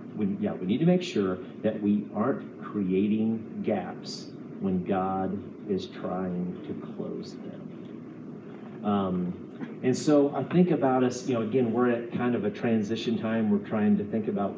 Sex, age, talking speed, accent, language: male, 40-59, 165 wpm, American, English